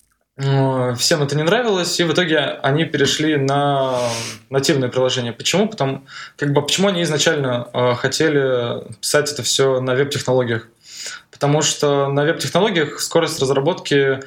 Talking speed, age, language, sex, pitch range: 135 wpm, 20-39, Russian, male, 125-150 Hz